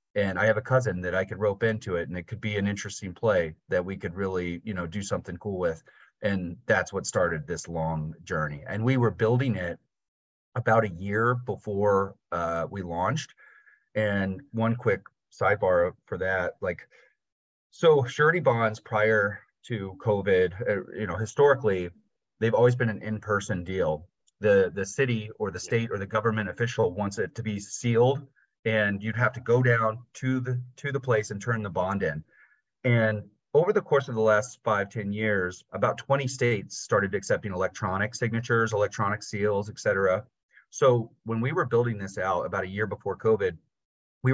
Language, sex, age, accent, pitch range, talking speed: English, male, 30-49, American, 100-120 Hz, 185 wpm